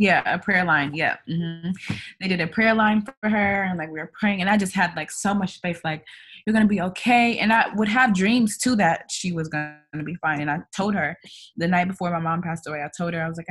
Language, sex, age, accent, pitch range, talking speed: English, female, 20-39, American, 155-185 Hz, 275 wpm